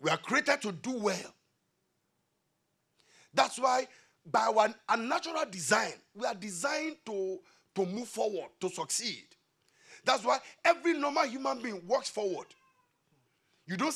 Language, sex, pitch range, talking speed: English, male, 190-305 Hz, 135 wpm